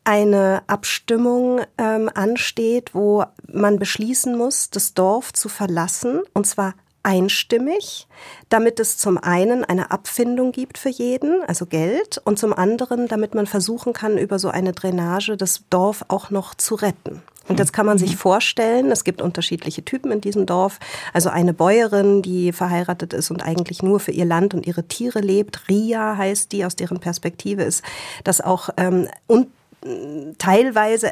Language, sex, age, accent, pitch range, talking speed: German, female, 40-59, German, 180-225 Hz, 160 wpm